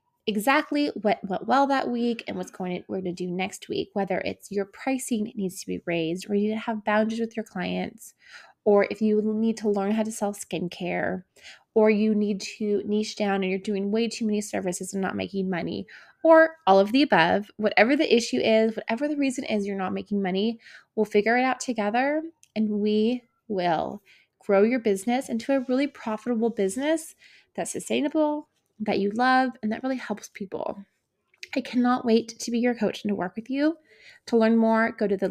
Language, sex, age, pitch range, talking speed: English, female, 20-39, 205-275 Hz, 205 wpm